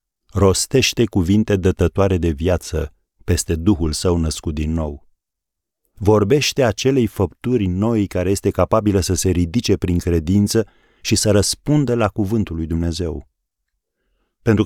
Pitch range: 80-110 Hz